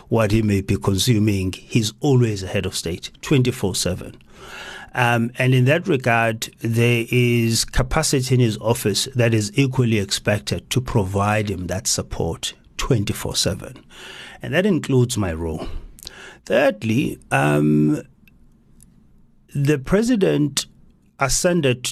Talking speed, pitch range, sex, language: 115 wpm, 105-130 Hz, male, English